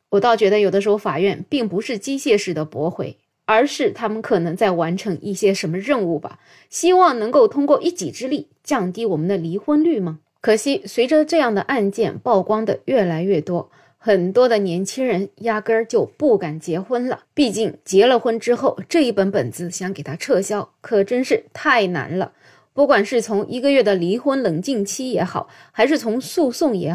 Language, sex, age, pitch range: Chinese, female, 20-39, 185-265 Hz